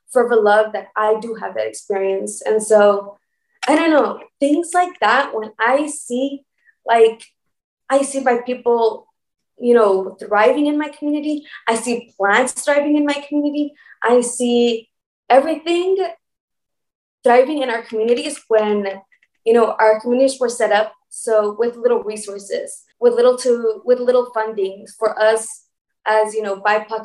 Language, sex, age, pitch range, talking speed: English, female, 20-39, 210-275 Hz, 150 wpm